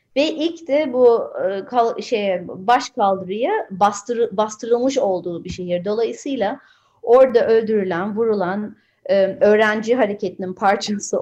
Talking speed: 120 wpm